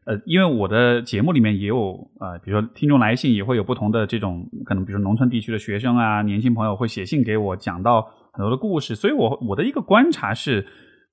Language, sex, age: Chinese, male, 20-39